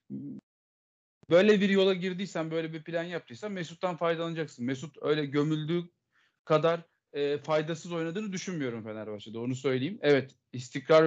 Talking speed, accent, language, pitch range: 125 wpm, native, Turkish, 145-195 Hz